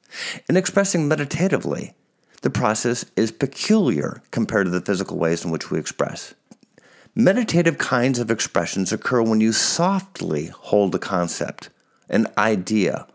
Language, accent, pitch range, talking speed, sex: English, American, 100-155 Hz, 130 wpm, male